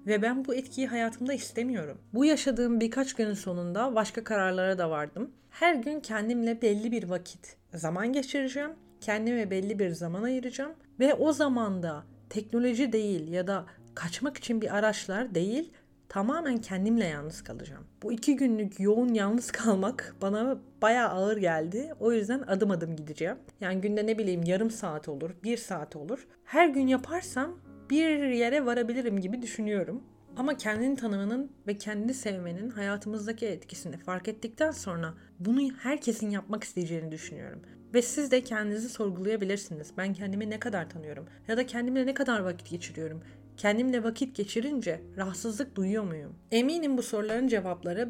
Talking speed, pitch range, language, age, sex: 150 wpm, 195-250 Hz, Turkish, 40-59, female